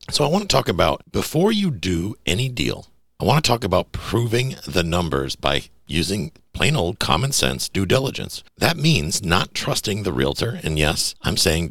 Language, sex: English, male